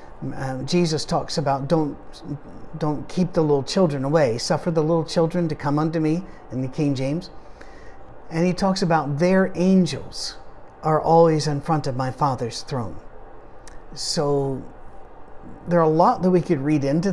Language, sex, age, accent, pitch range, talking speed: English, male, 50-69, American, 140-170 Hz, 165 wpm